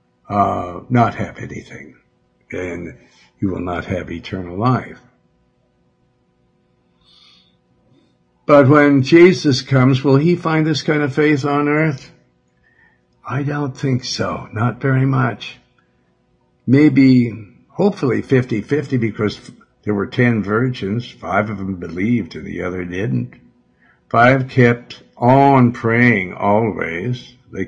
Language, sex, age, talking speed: English, male, 60-79, 115 wpm